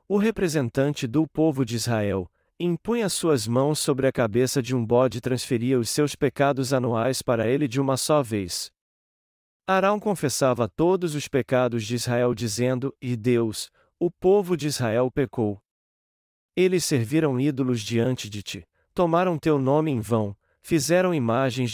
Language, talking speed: Portuguese, 150 wpm